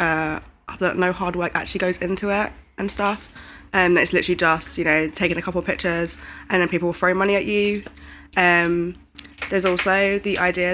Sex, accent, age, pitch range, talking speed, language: female, British, 20-39, 160-190 Hz, 195 wpm, English